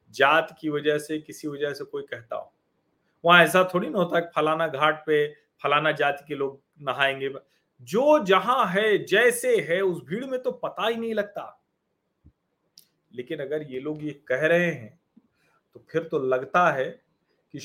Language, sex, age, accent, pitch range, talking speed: Hindi, male, 40-59, native, 155-215 Hz, 175 wpm